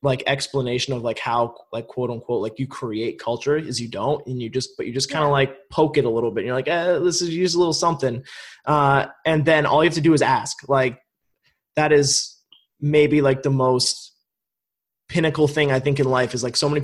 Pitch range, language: 125-155 Hz, English